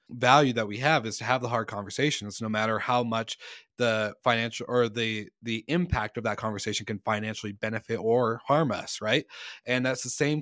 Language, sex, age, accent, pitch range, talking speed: English, male, 20-39, American, 110-125 Hz, 195 wpm